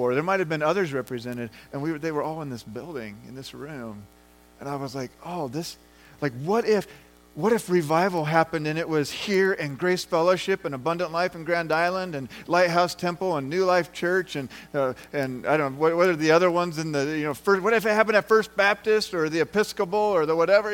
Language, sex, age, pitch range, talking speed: English, male, 40-59, 125-185 Hz, 230 wpm